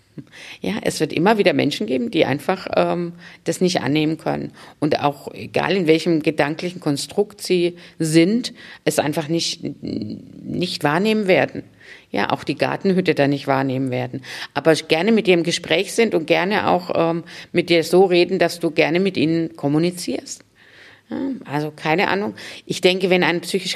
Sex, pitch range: female, 140-175 Hz